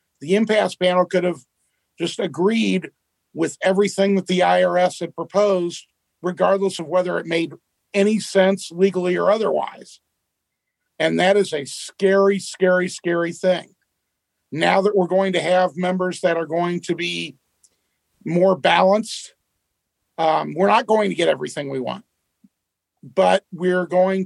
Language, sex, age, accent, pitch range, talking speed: English, male, 50-69, American, 170-195 Hz, 145 wpm